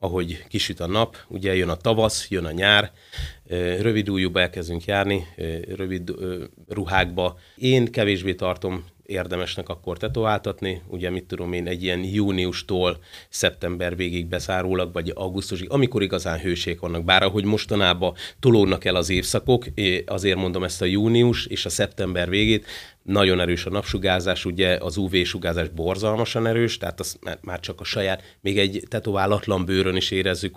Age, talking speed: 30-49, 150 wpm